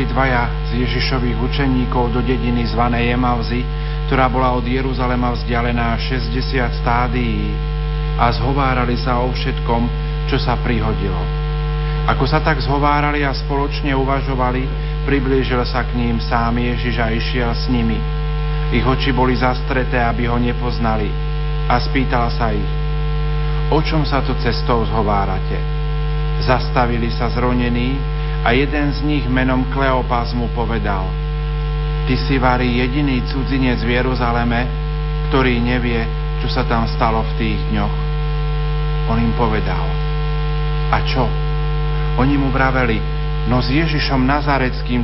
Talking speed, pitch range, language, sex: 130 wpm, 125-150 Hz, Slovak, male